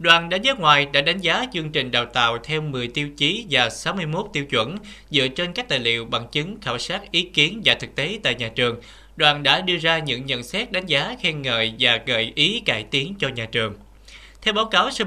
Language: Vietnamese